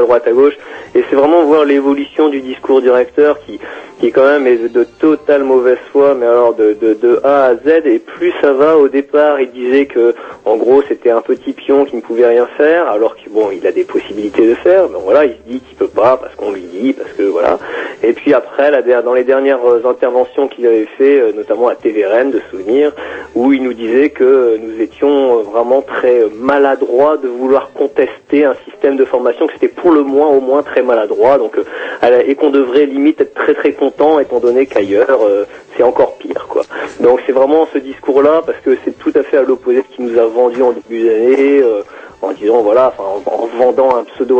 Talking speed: 215 wpm